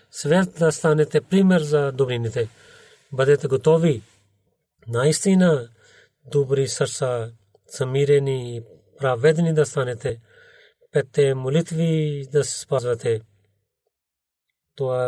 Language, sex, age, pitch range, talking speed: Bulgarian, male, 40-59, 130-160 Hz, 90 wpm